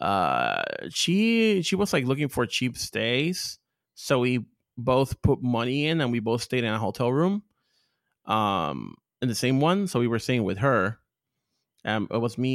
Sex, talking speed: male, 180 wpm